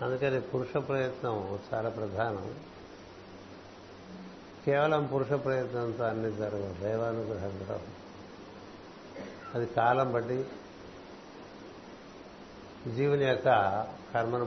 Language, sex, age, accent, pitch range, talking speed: Telugu, male, 60-79, native, 110-130 Hz, 70 wpm